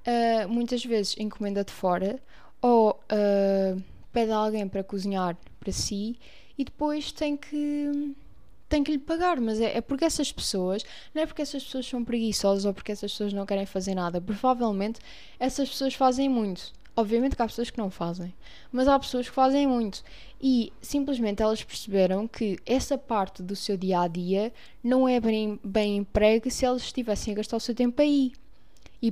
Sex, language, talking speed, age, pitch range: female, Portuguese, 180 wpm, 10-29, 205-255 Hz